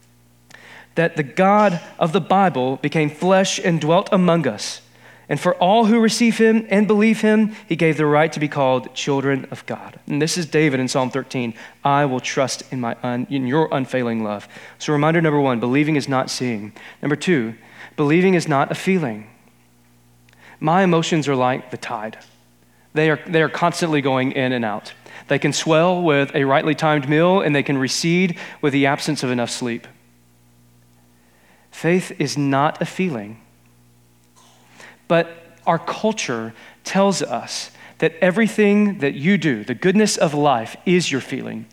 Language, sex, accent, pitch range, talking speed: English, male, American, 115-175 Hz, 170 wpm